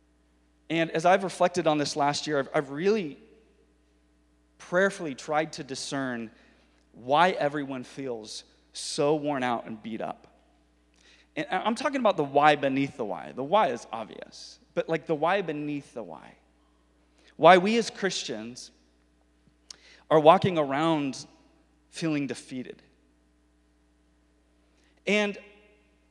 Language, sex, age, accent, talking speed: English, male, 30-49, American, 125 wpm